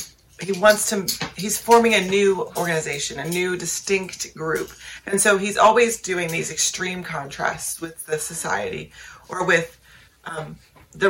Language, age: English, 30-49